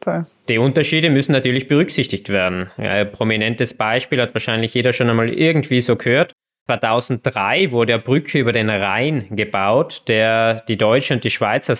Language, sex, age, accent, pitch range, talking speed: German, male, 20-39, German, 110-135 Hz, 160 wpm